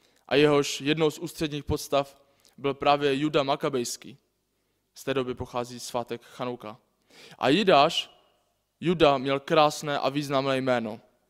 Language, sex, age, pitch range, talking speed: Czech, male, 20-39, 125-155 Hz, 125 wpm